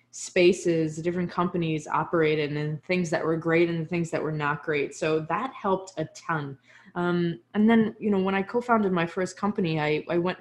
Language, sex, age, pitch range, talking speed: English, female, 20-39, 155-180 Hz, 195 wpm